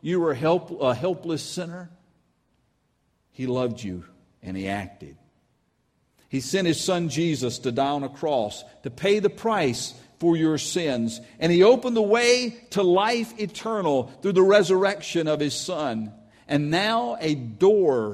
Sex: male